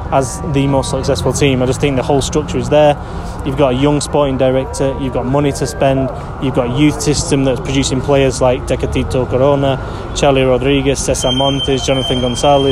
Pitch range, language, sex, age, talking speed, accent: 135-160 Hz, English, male, 20-39, 195 wpm, British